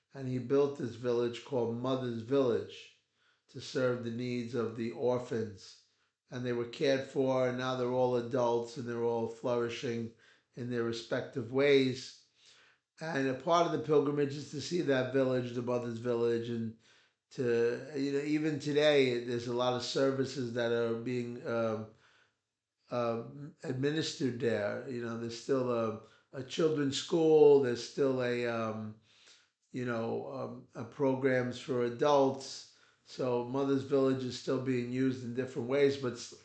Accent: American